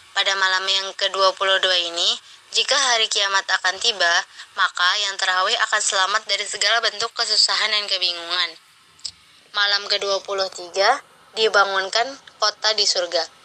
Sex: female